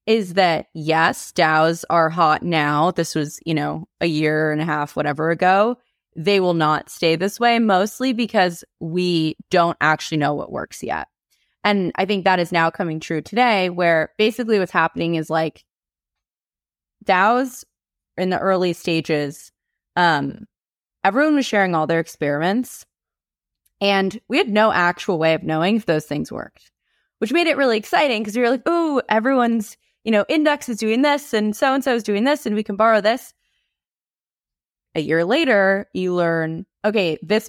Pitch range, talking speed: 160-220 Hz, 170 wpm